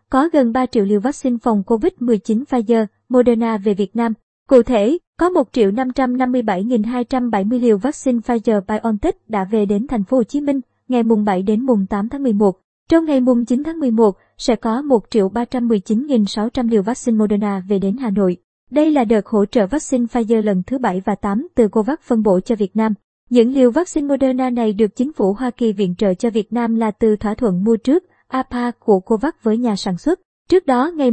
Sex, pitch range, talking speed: male, 215-255 Hz, 200 wpm